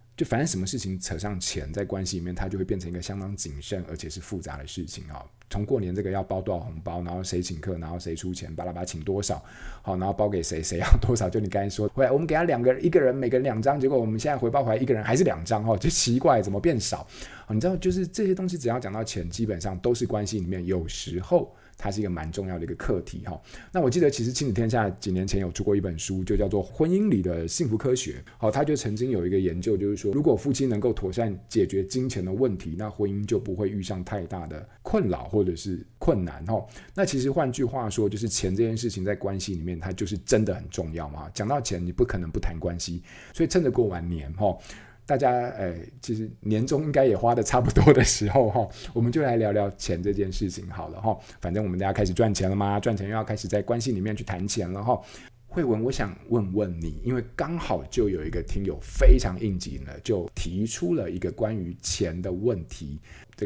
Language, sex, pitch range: Chinese, male, 90-120 Hz